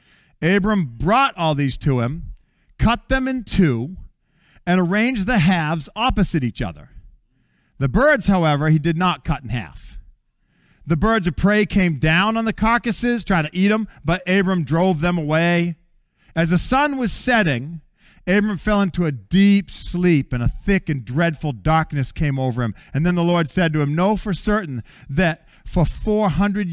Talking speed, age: 175 wpm, 40-59